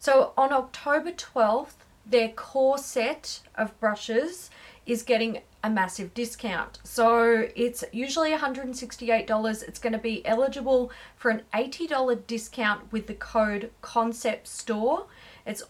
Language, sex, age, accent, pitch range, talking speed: English, female, 30-49, Australian, 195-245 Hz, 120 wpm